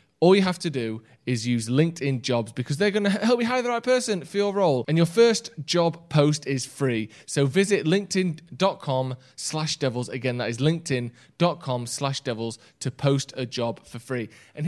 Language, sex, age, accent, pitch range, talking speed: English, male, 20-39, British, 120-150 Hz, 190 wpm